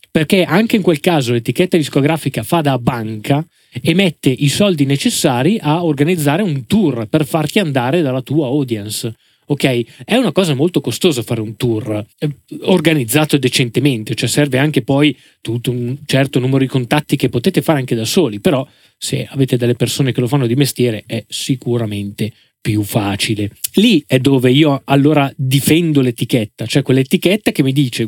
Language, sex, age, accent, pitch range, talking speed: Italian, male, 20-39, native, 120-155 Hz, 170 wpm